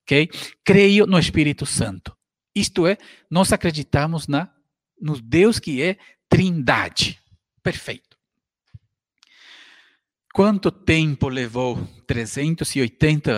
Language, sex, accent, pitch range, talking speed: Portuguese, male, Brazilian, 130-170 Hz, 80 wpm